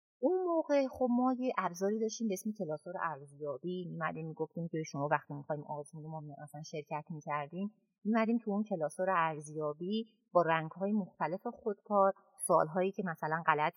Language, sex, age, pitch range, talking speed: Persian, female, 30-49, 170-245 Hz, 155 wpm